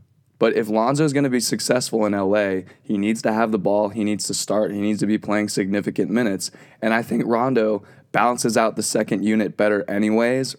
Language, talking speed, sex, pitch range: English, 215 wpm, male, 100-120 Hz